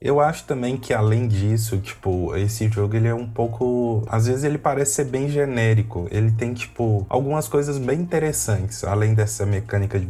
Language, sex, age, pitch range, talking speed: Portuguese, male, 20-39, 100-125 Hz, 185 wpm